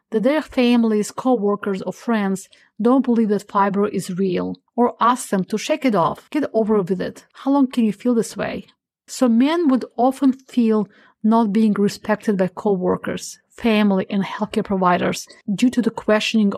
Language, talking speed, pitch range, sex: English, 175 wpm, 195-240 Hz, female